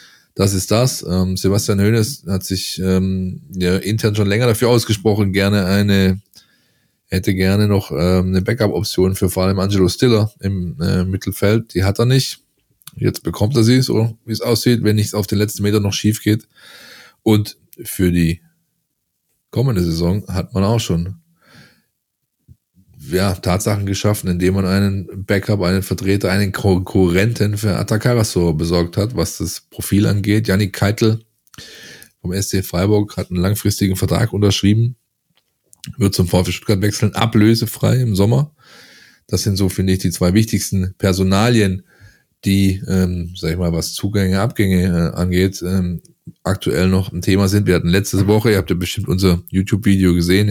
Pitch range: 95-105 Hz